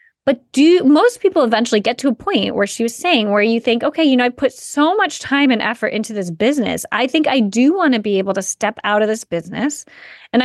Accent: American